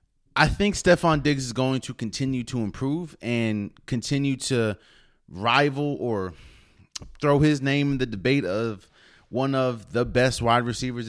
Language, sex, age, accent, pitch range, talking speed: English, male, 20-39, American, 95-130 Hz, 150 wpm